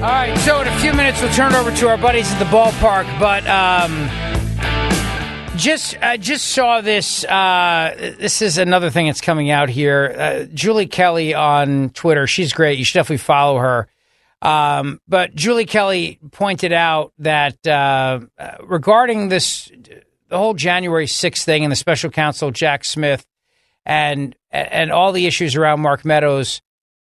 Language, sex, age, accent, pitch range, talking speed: English, male, 40-59, American, 140-190 Hz, 165 wpm